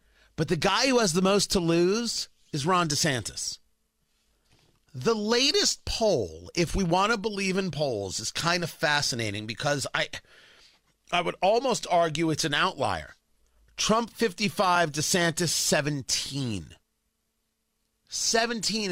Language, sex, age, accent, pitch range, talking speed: English, male, 40-59, American, 140-200 Hz, 125 wpm